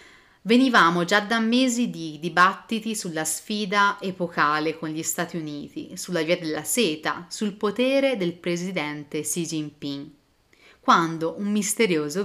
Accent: native